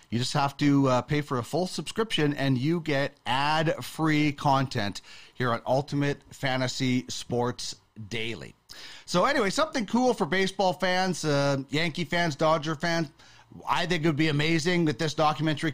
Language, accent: English, American